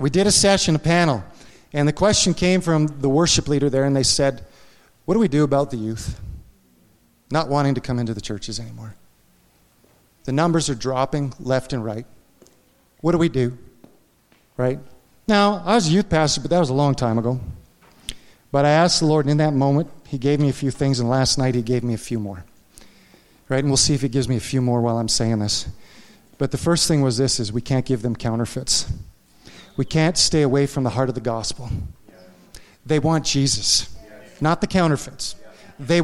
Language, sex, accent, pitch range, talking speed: English, male, American, 120-155 Hz, 210 wpm